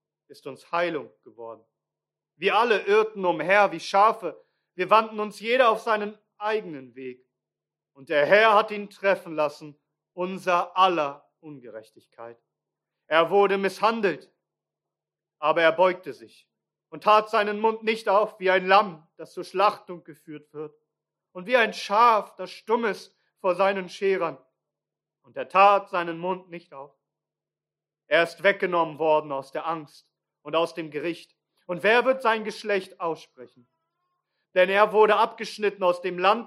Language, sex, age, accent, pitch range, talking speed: German, male, 40-59, German, 170-215 Hz, 150 wpm